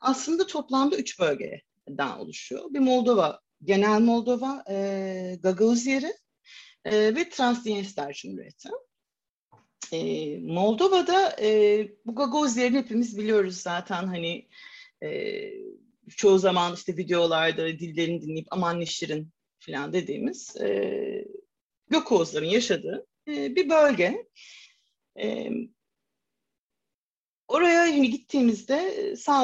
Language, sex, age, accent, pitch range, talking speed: Turkish, female, 40-59, native, 195-305 Hz, 95 wpm